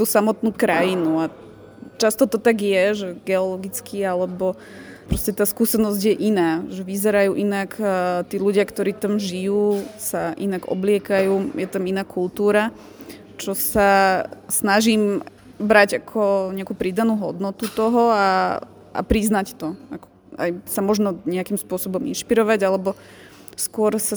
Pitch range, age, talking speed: 190-215 Hz, 20-39, 130 wpm